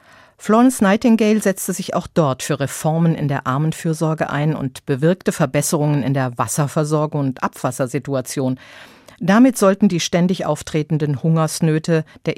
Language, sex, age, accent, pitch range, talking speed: German, female, 50-69, German, 140-190 Hz, 130 wpm